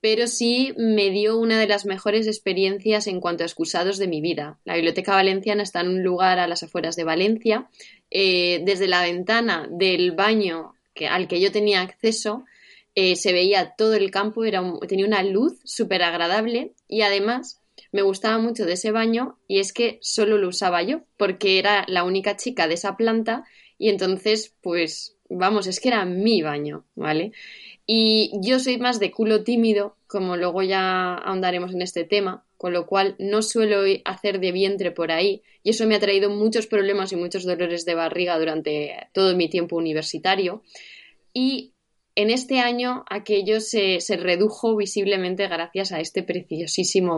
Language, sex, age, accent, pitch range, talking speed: Spanish, female, 20-39, Spanish, 180-220 Hz, 175 wpm